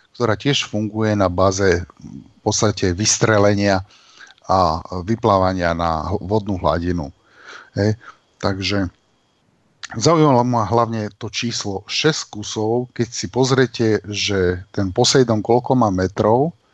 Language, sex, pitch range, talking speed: Slovak, male, 100-120 Hz, 110 wpm